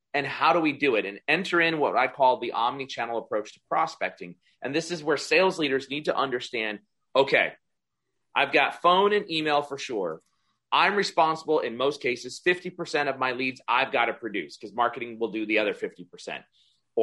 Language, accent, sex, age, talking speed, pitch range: English, American, male, 30-49, 190 wpm, 130-185 Hz